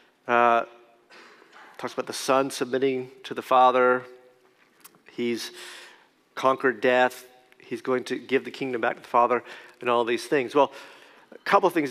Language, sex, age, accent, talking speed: English, male, 40-59, American, 150 wpm